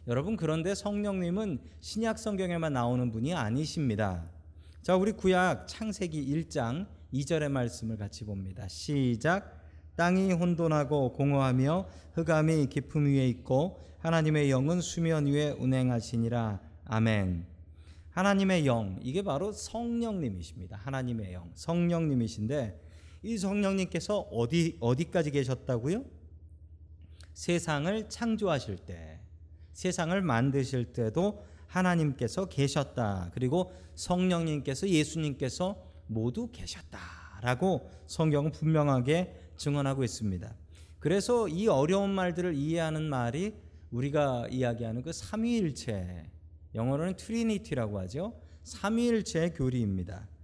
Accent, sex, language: native, male, Korean